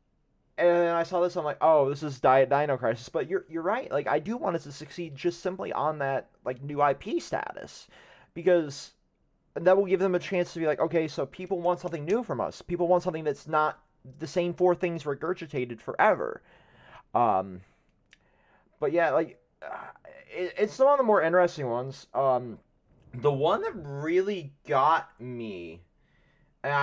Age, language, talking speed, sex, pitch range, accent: 30-49, English, 180 wpm, male, 125-165 Hz, American